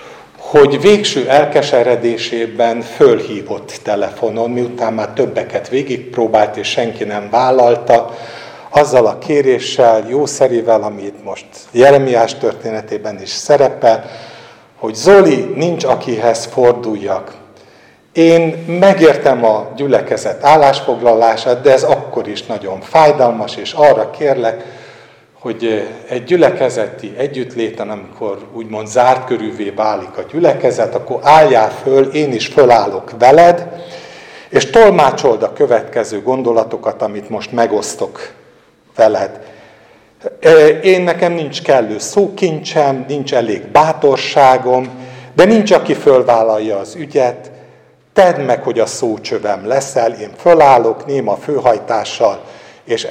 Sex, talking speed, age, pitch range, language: male, 105 wpm, 60-79, 115-160 Hz, Hungarian